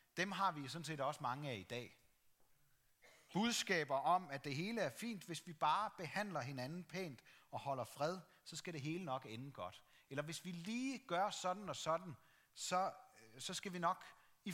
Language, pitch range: Danish, 120-185 Hz